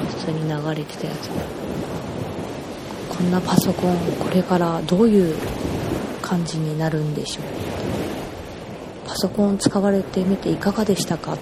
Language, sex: Japanese, female